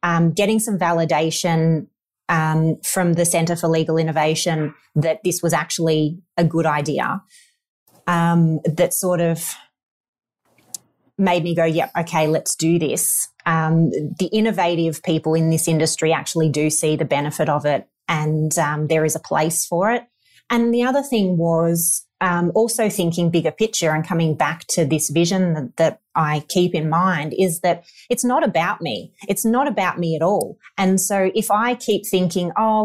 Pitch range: 160-195 Hz